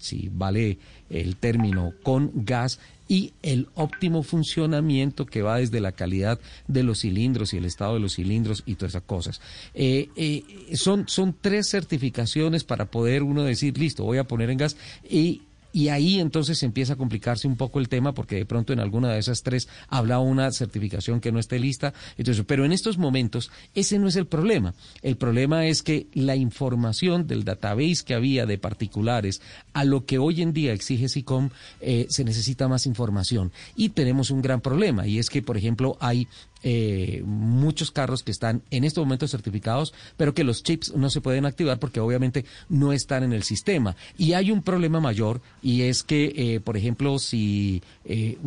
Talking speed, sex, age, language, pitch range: 185 wpm, male, 40-59, Spanish, 110-145 Hz